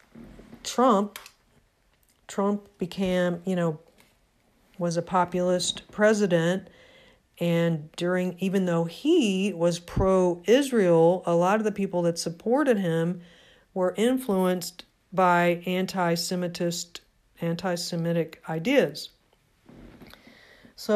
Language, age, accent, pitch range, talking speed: English, 50-69, American, 170-200 Hz, 95 wpm